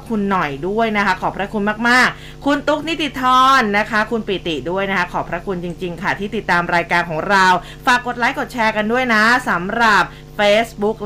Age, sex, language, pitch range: 20-39, female, Thai, 195-250 Hz